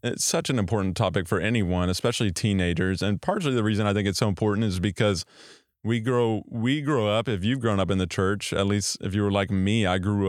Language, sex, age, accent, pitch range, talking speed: English, male, 20-39, American, 95-120 Hz, 240 wpm